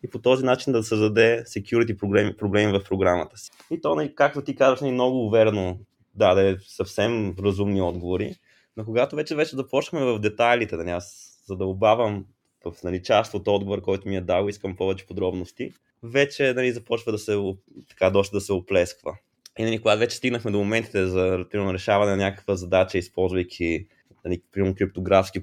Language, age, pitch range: Bulgarian, 20-39, 95-120 Hz